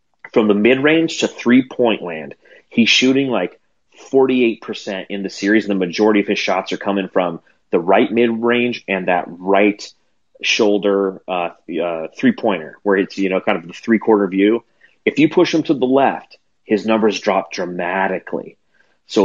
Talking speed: 165 wpm